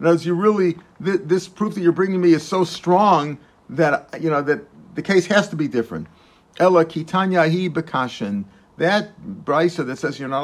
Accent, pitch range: American, 130-170 Hz